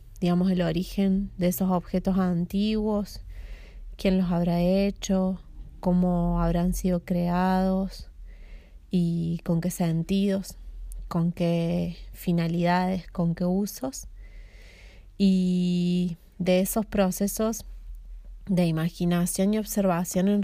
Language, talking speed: Portuguese, 100 wpm